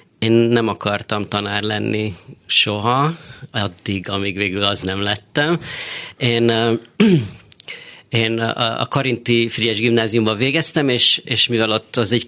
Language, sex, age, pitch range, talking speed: Hungarian, male, 30-49, 110-130 Hz, 120 wpm